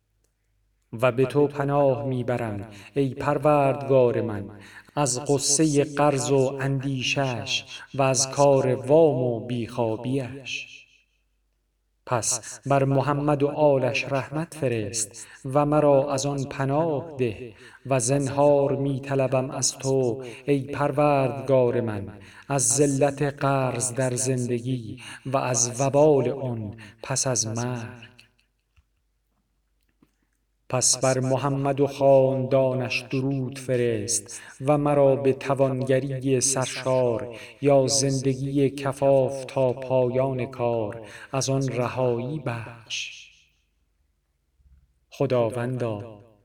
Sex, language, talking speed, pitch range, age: male, Persian, 95 wpm, 120-140 Hz, 40-59